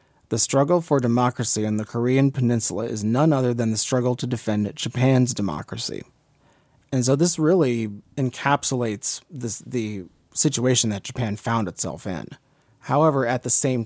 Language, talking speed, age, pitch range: English, 150 wpm, 30-49, 110-135 Hz